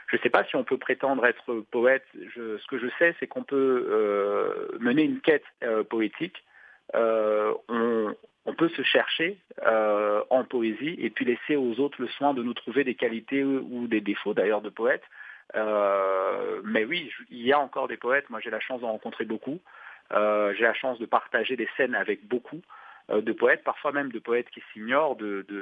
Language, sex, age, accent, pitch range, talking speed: French, male, 40-59, French, 110-135 Hz, 210 wpm